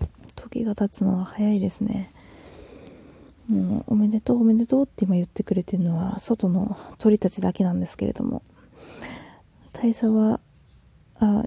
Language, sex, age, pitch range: Japanese, female, 20-39, 195-235 Hz